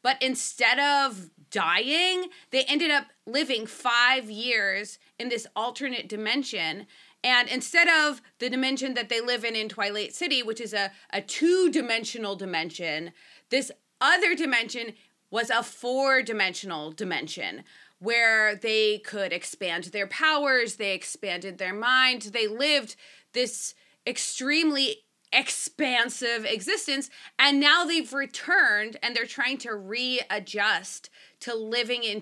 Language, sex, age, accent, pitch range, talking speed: English, female, 30-49, American, 215-285 Hz, 125 wpm